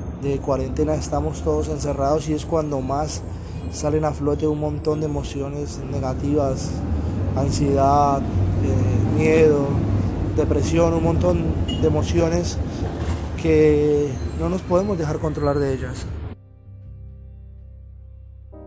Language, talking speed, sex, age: Spanish, 105 wpm, male, 20-39